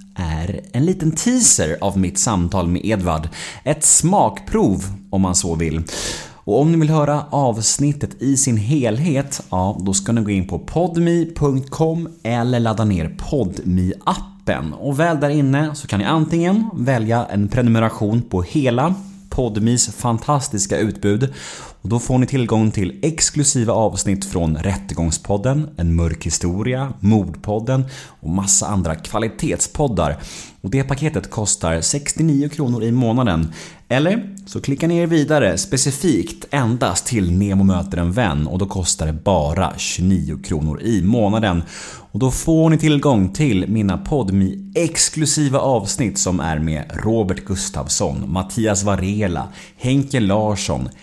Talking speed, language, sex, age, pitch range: 140 wpm, Swedish, male, 30-49, 95-140 Hz